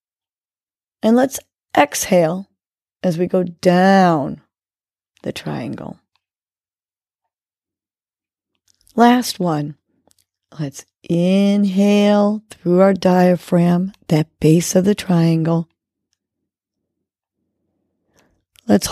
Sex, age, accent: female, 40-59, American